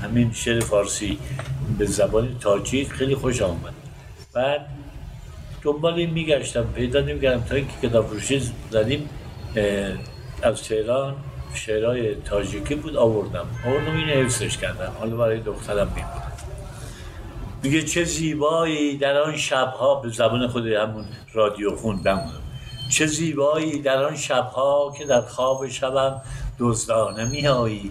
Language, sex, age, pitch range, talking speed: Persian, male, 60-79, 110-135 Hz, 120 wpm